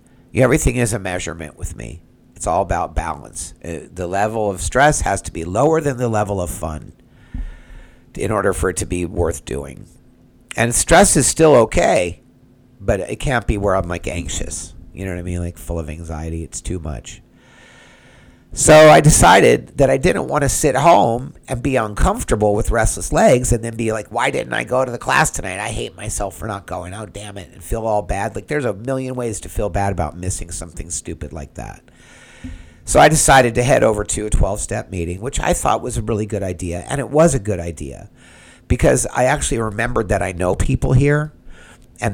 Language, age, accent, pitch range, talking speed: English, 50-69, American, 85-120 Hz, 205 wpm